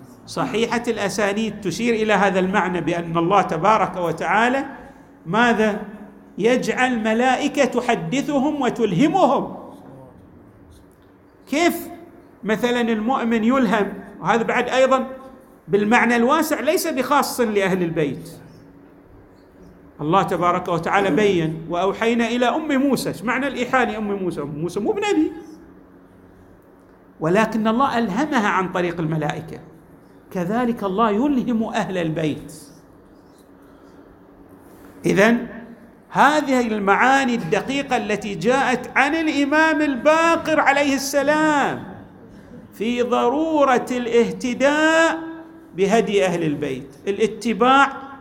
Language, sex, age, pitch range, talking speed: Arabic, male, 50-69, 180-265 Hz, 90 wpm